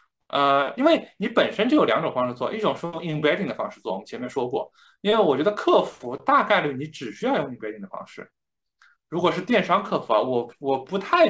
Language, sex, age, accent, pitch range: Chinese, male, 20-39, native, 130-195 Hz